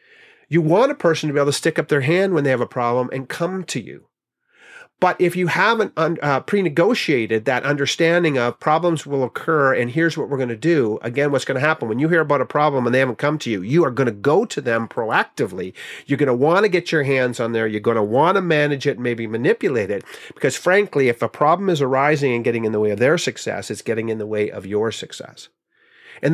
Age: 40-59